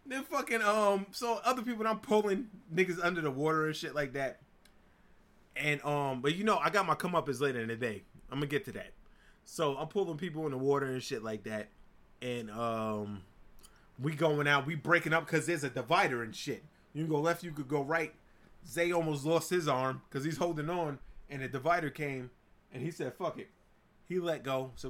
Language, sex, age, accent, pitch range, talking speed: English, male, 30-49, American, 130-180 Hz, 220 wpm